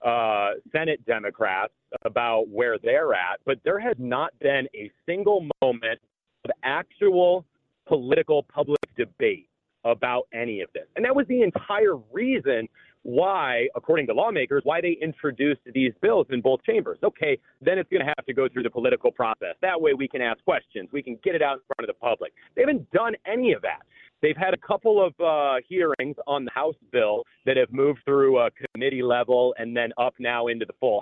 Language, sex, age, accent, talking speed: English, male, 40-59, American, 195 wpm